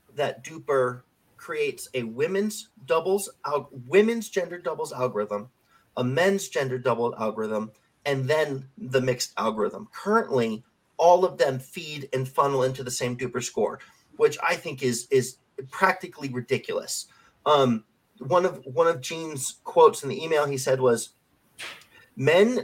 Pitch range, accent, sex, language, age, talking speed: 130-195 Hz, American, male, English, 30-49, 145 wpm